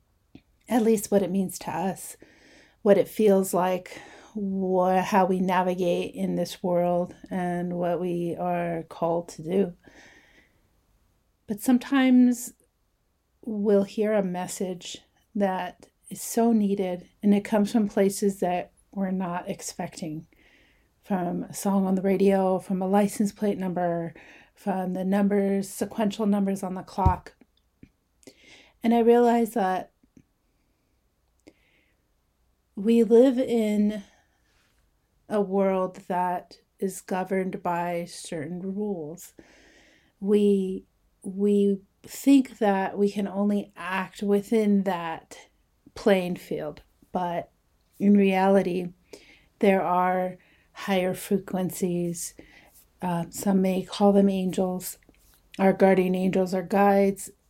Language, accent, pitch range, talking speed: English, American, 180-205 Hz, 115 wpm